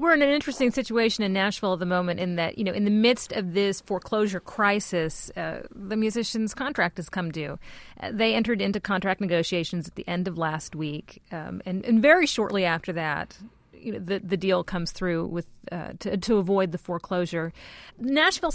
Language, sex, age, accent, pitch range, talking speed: English, female, 40-59, American, 175-230 Hz, 200 wpm